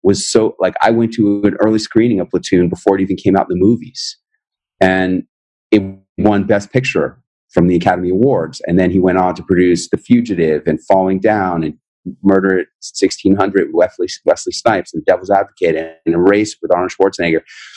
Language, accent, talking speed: English, American, 195 wpm